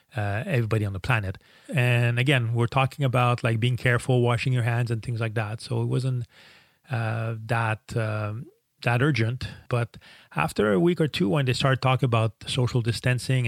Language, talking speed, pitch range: English, 185 wpm, 105-125 Hz